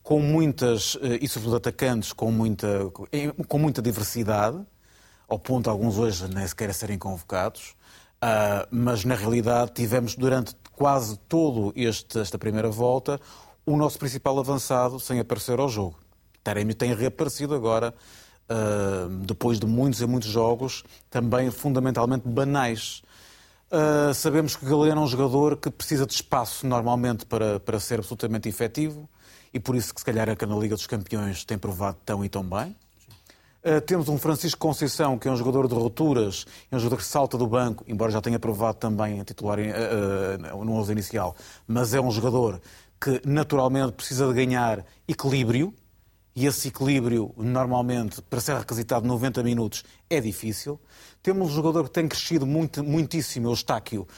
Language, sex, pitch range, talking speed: Portuguese, male, 105-135 Hz, 160 wpm